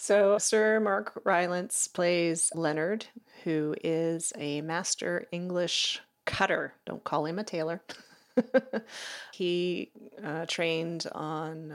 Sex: female